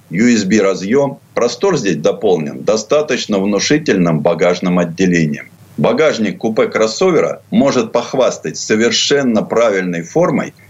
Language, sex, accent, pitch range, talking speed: Russian, male, native, 100-165 Hz, 90 wpm